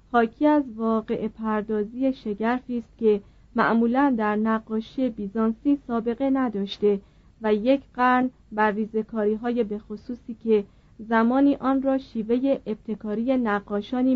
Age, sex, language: 40-59, female, Persian